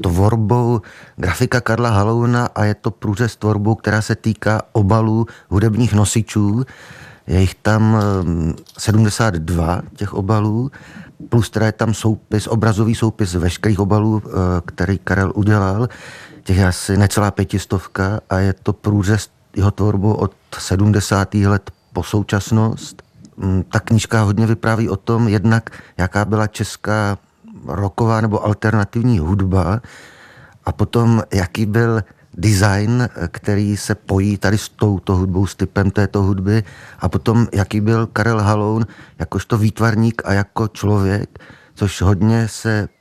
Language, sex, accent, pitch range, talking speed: Czech, male, native, 100-115 Hz, 130 wpm